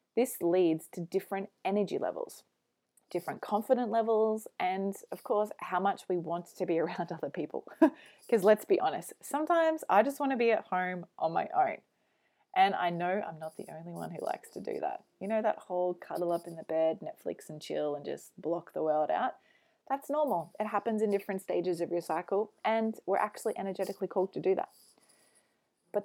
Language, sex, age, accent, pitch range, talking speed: English, female, 20-39, Australian, 175-225 Hz, 200 wpm